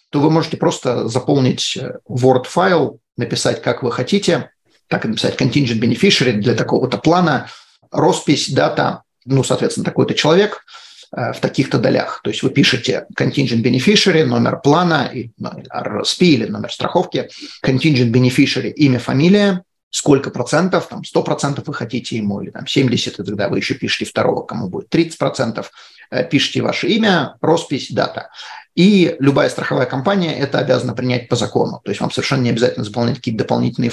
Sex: male